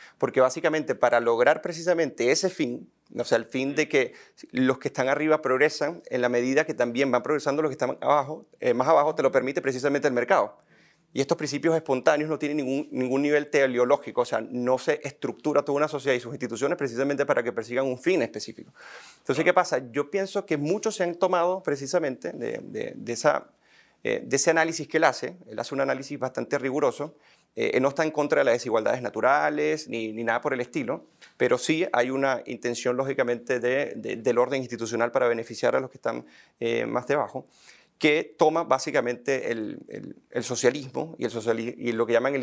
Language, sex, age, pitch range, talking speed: Spanish, male, 30-49, 125-155 Hz, 205 wpm